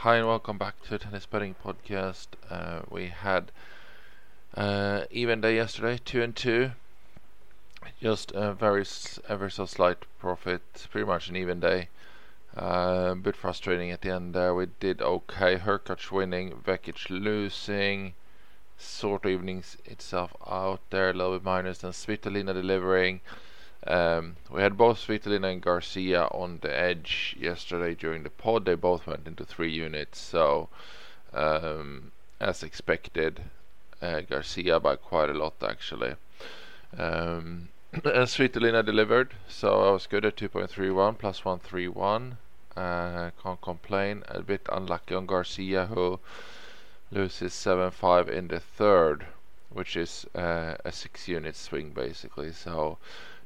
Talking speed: 145 wpm